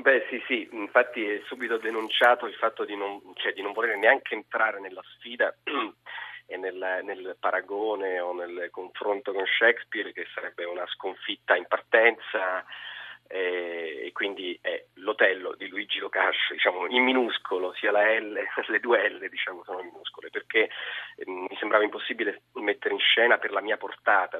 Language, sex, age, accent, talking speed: Italian, male, 30-49, native, 160 wpm